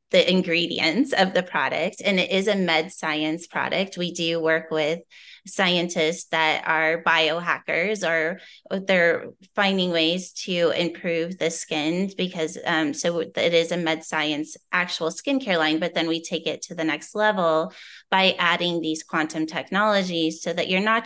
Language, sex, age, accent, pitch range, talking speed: English, female, 20-39, American, 160-190 Hz, 160 wpm